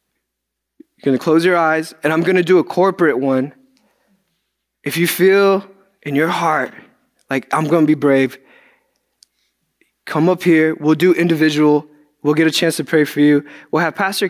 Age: 20-39